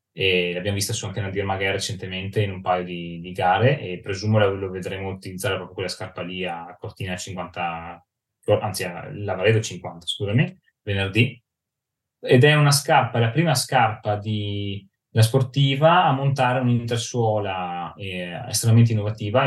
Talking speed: 155 wpm